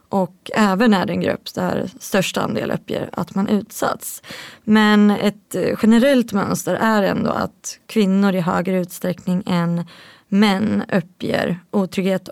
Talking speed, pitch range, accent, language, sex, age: 135 wpm, 180-215 Hz, native, Swedish, female, 20-39